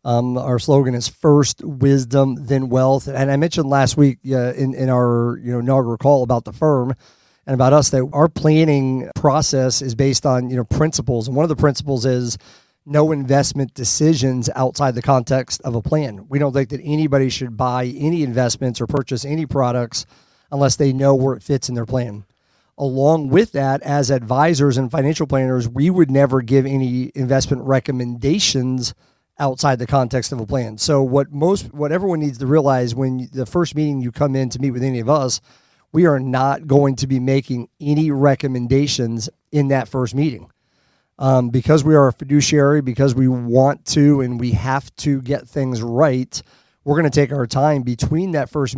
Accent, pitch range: American, 125-145 Hz